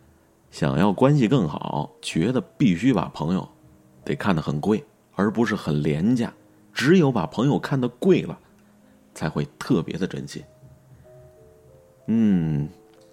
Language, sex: Chinese, male